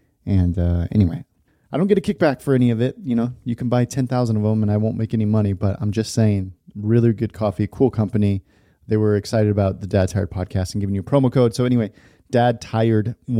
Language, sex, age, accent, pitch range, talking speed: English, male, 30-49, American, 100-125 Hz, 245 wpm